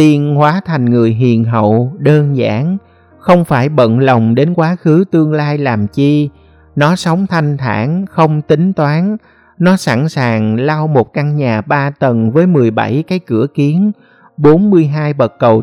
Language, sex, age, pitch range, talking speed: Vietnamese, male, 50-69, 120-160 Hz, 160 wpm